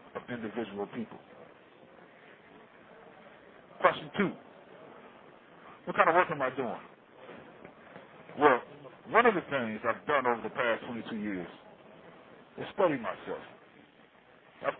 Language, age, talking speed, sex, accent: English, 50-69, 115 wpm, male, American